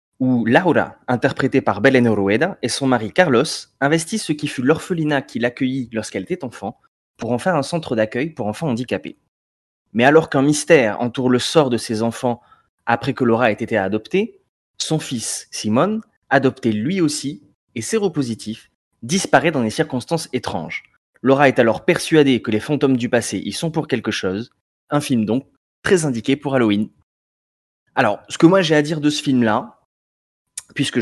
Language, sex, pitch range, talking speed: French, male, 110-150 Hz, 175 wpm